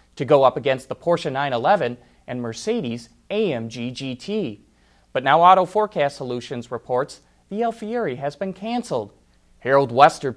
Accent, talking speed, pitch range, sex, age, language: American, 140 wpm, 120-195 Hz, male, 30-49, English